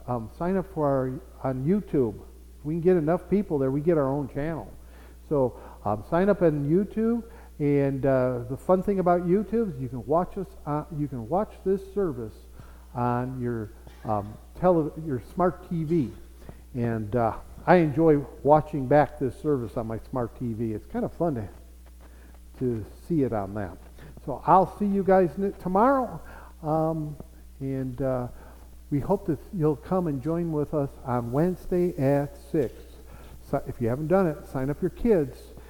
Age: 50-69